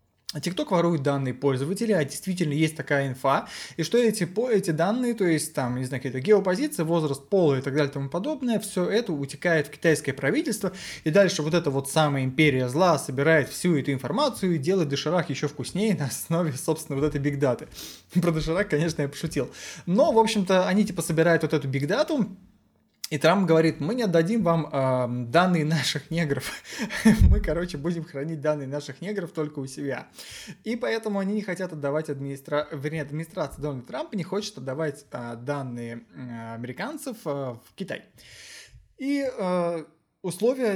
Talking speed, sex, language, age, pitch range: 175 wpm, male, Russian, 20-39, 140-185 Hz